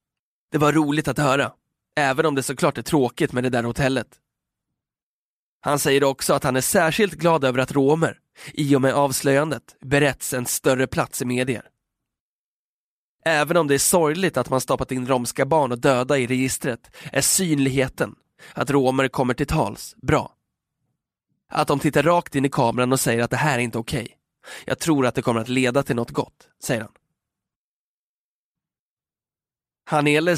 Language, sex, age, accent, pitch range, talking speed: Swedish, male, 20-39, native, 125-150 Hz, 175 wpm